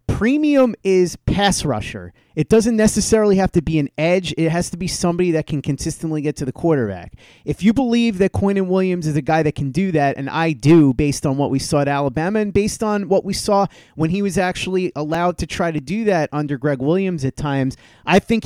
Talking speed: 230 wpm